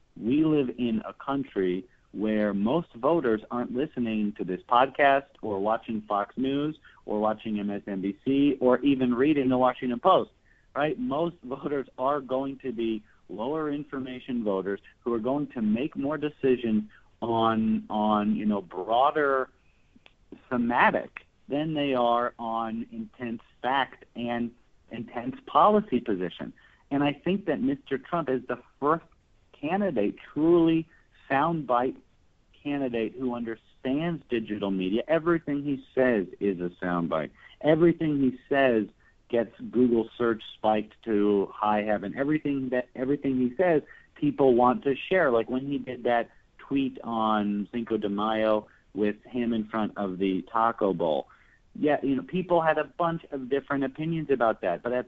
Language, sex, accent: English, male, American